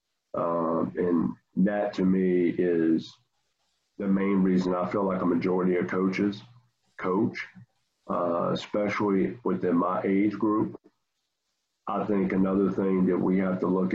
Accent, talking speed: American, 140 wpm